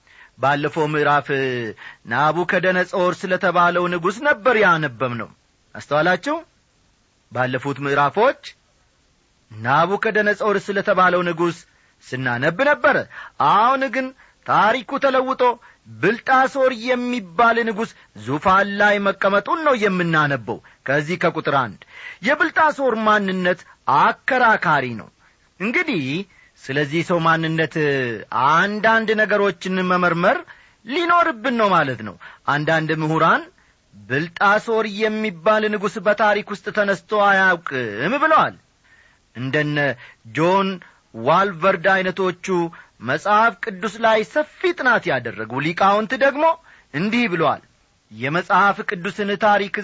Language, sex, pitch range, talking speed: Amharic, male, 155-215 Hz, 95 wpm